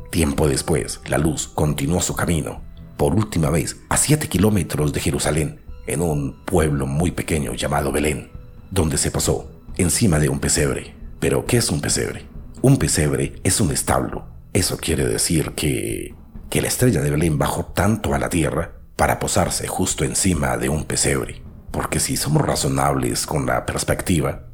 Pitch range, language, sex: 70-90 Hz, Spanish, male